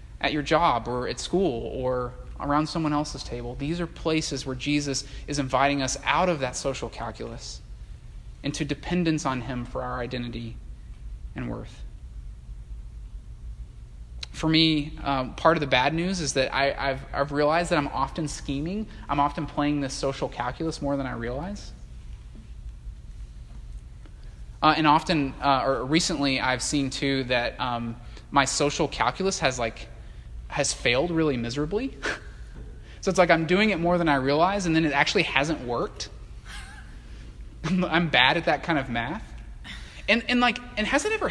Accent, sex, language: American, male, English